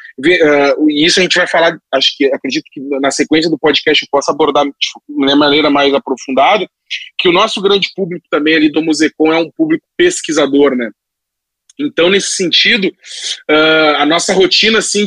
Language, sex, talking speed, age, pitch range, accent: Portuguese, male, 180 wpm, 20-39, 155-215 Hz, Brazilian